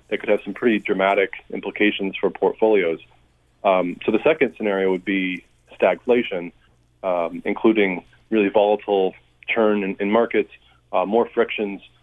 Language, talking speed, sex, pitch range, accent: English, 140 wpm, male, 90-110 Hz, American